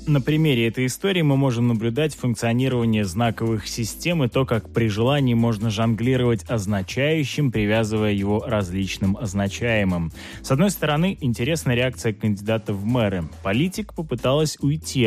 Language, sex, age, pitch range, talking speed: Russian, male, 20-39, 100-140 Hz, 130 wpm